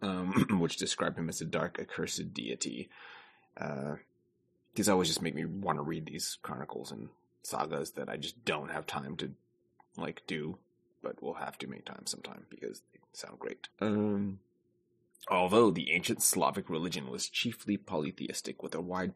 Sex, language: male, English